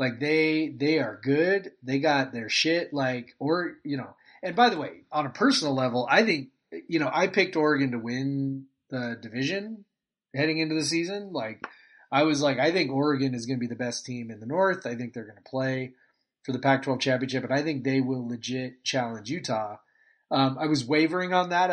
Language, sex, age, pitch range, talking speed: English, male, 30-49, 130-165 Hz, 215 wpm